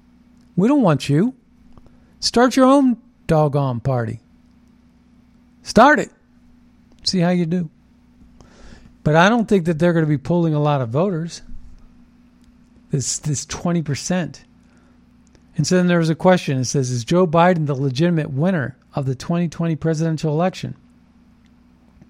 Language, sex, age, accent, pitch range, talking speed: English, male, 50-69, American, 135-175 Hz, 140 wpm